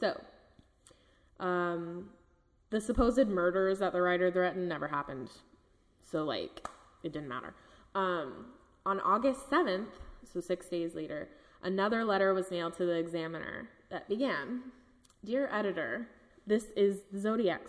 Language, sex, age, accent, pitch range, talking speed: English, female, 20-39, American, 180-230 Hz, 130 wpm